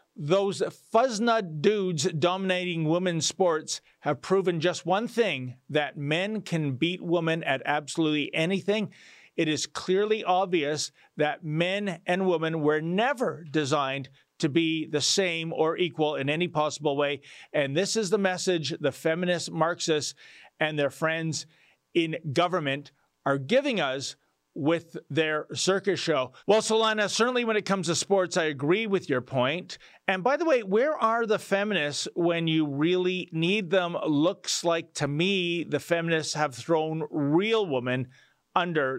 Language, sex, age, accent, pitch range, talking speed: English, male, 40-59, American, 150-195 Hz, 150 wpm